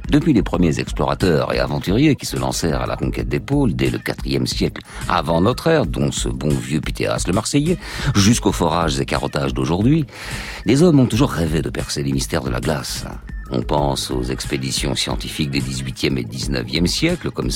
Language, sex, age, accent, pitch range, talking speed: French, male, 50-69, French, 70-115 Hz, 190 wpm